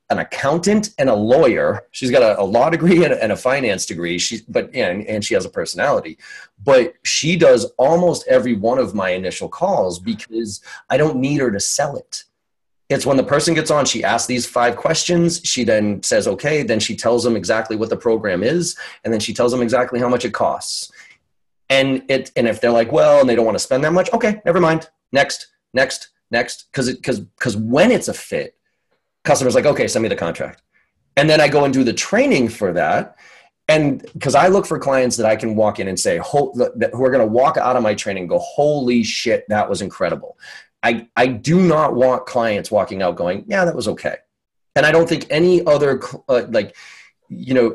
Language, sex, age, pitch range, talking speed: English, male, 30-49, 120-170 Hz, 220 wpm